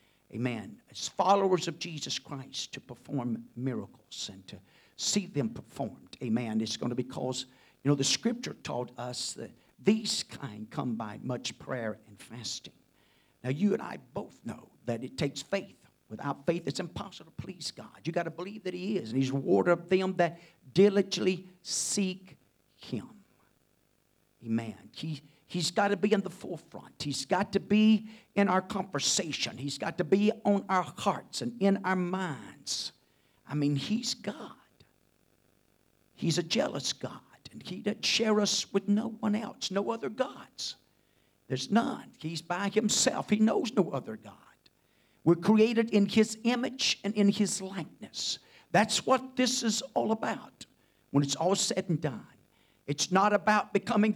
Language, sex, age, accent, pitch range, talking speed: English, male, 50-69, American, 135-205 Hz, 165 wpm